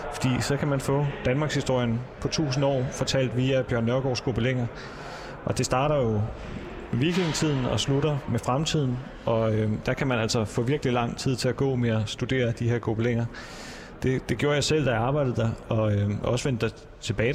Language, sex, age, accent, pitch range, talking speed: Danish, male, 30-49, native, 110-130 Hz, 195 wpm